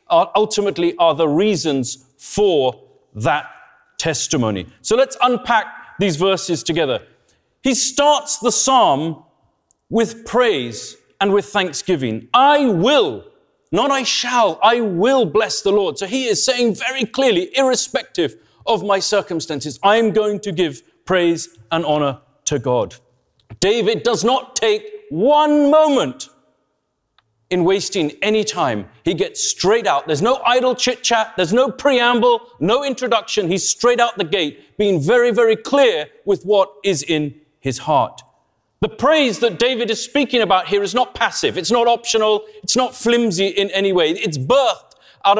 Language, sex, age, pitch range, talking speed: English, male, 40-59, 195-265 Hz, 150 wpm